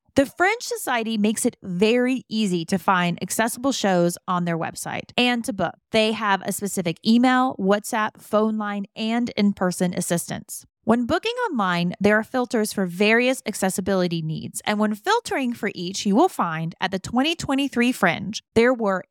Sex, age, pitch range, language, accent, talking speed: female, 30-49, 190-255 Hz, English, American, 165 wpm